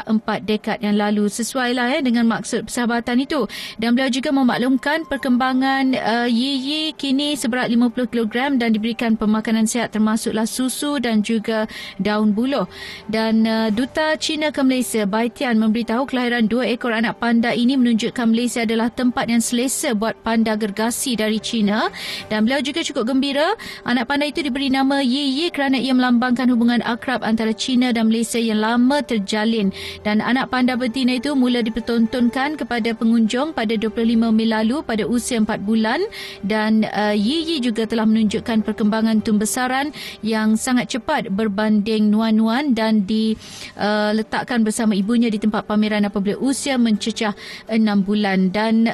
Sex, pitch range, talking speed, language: female, 220-255 Hz, 155 wpm, Malay